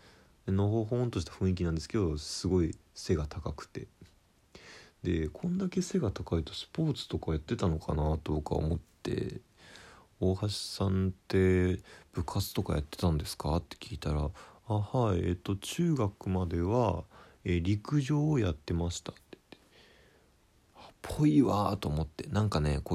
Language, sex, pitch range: Japanese, male, 85-125 Hz